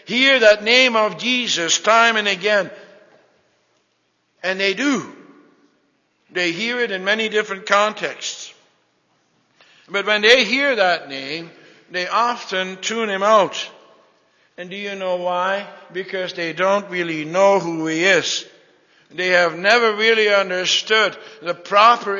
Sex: male